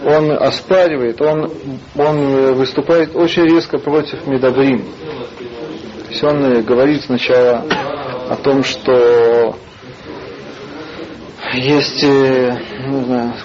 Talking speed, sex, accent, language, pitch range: 80 wpm, male, native, Russian, 125-150 Hz